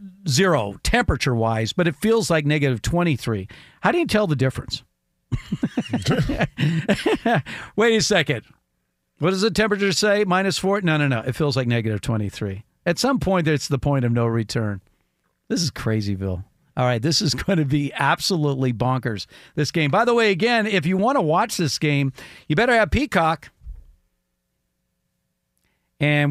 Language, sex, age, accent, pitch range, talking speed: English, male, 50-69, American, 125-160 Hz, 165 wpm